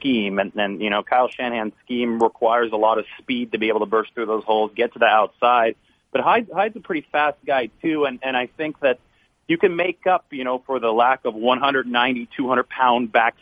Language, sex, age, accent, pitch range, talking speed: English, male, 30-49, American, 110-125 Hz, 235 wpm